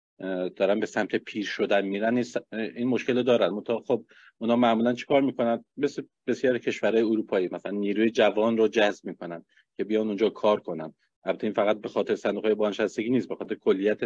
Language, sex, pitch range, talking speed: Persian, male, 100-130 Hz, 190 wpm